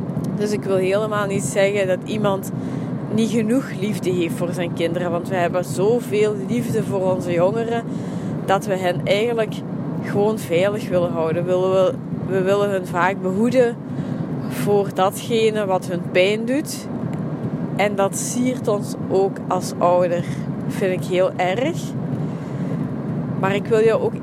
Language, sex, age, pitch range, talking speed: Dutch, female, 20-39, 180-210 Hz, 145 wpm